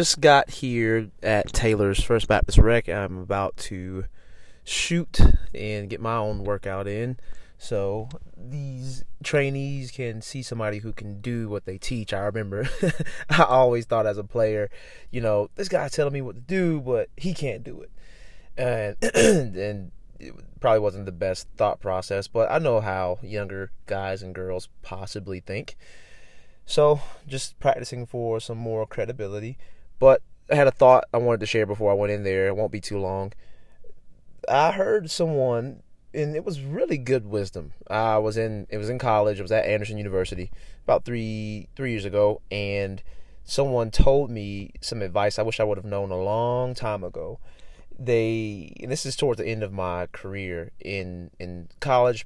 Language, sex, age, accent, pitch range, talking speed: English, male, 20-39, American, 100-125 Hz, 175 wpm